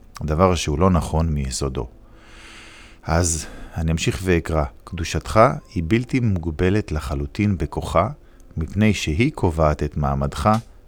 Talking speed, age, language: 110 wpm, 50-69, Hebrew